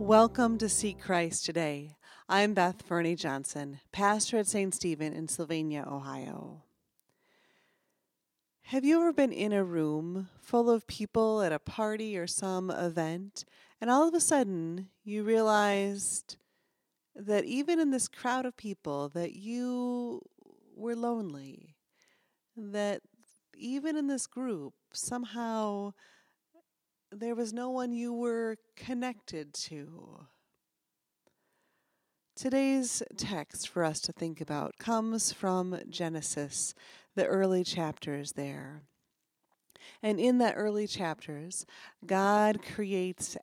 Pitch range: 170-235 Hz